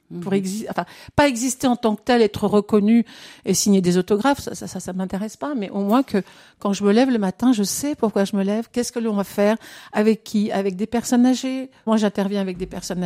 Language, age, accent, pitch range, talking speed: French, 50-69, French, 200-250 Hz, 250 wpm